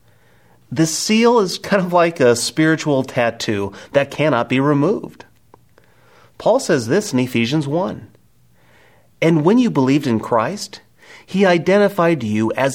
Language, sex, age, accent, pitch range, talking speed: English, male, 30-49, American, 115-160 Hz, 135 wpm